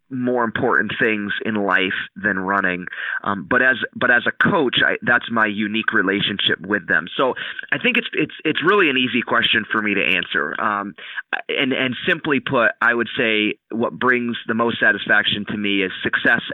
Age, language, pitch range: 30-49, English, 100-115 Hz